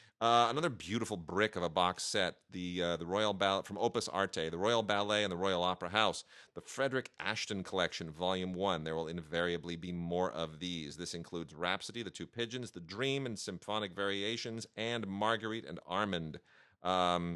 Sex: male